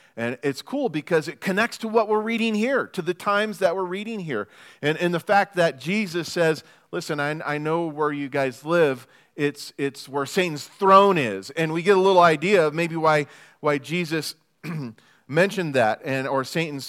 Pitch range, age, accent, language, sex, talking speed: 150-190 Hz, 40-59, American, English, male, 195 wpm